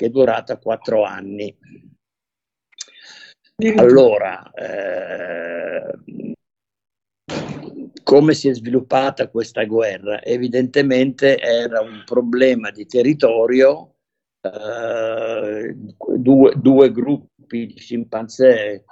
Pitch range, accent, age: 115-145 Hz, native, 50-69